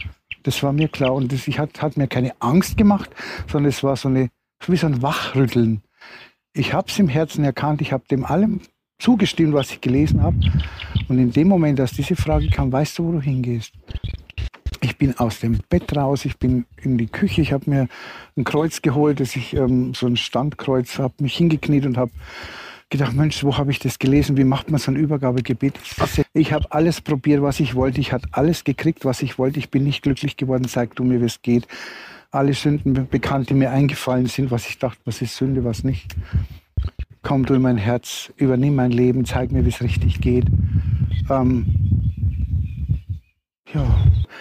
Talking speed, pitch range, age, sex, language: 195 wpm, 115-140 Hz, 60-79, male, German